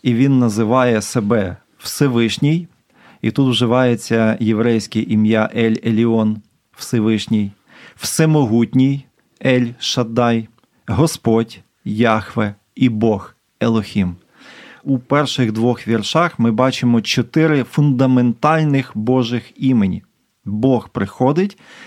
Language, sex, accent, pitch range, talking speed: Ukrainian, male, native, 110-140 Hz, 85 wpm